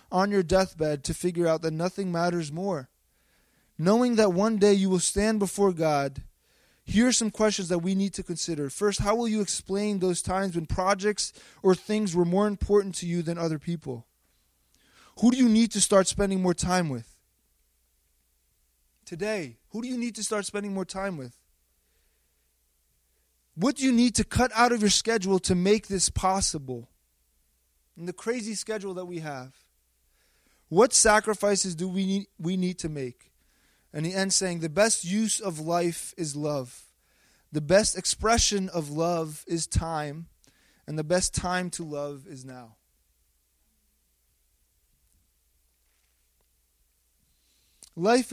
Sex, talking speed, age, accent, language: male, 155 wpm, 20-39, American, English